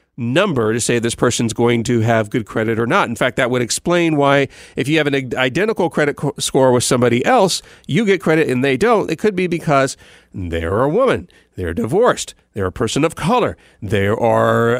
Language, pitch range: English, 115-150 Hz